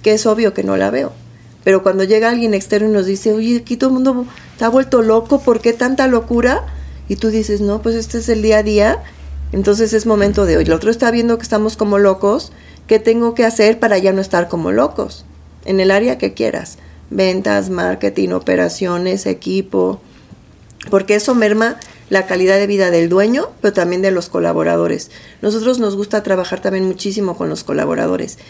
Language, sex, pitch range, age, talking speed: English, female, 180-220 Hz, 40-59, 195 wpm